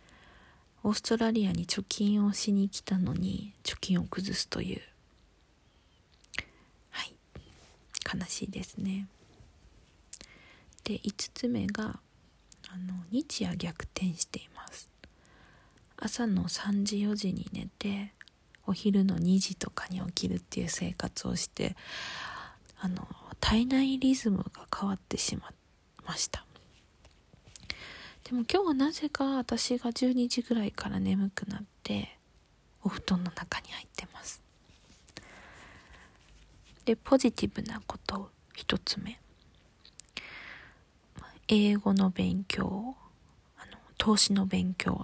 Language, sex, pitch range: Japanese, female, 190-225 Hz